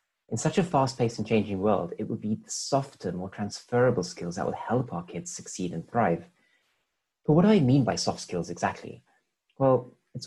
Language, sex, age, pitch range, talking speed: English, male, 30-49, 105-145 Hz, 200 wpm